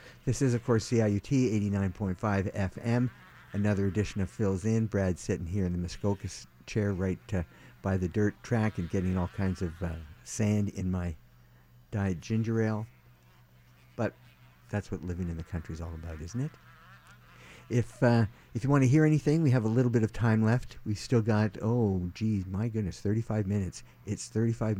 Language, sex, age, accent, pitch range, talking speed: English, male, 50-69, American, 85-115 Hz, 185 wpm